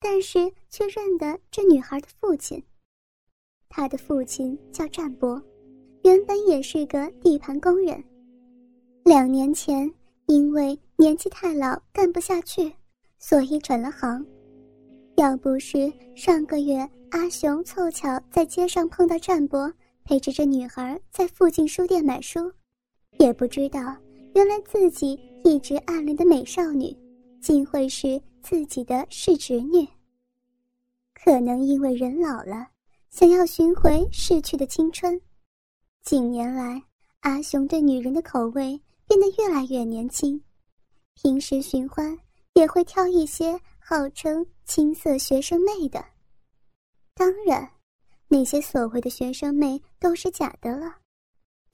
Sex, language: male, Chinese